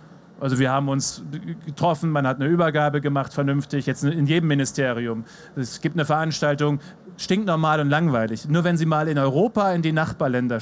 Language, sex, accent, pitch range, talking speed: German, male, German, 135-160 Hz, 180 wpm